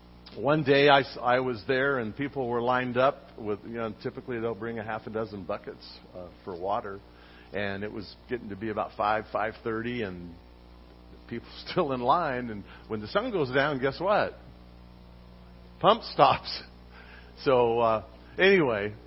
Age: 50-69